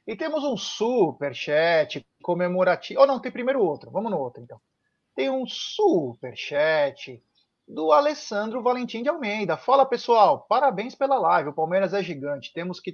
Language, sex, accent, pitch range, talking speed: Portuguese, male, Brazilian, 165-230 Hz, 155 wpm